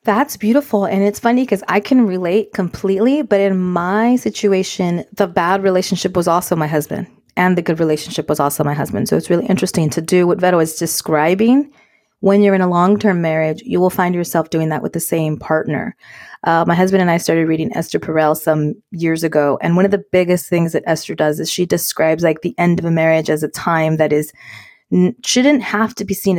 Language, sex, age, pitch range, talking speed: English, female, 30-49, 165-210 Hz, 220 wpm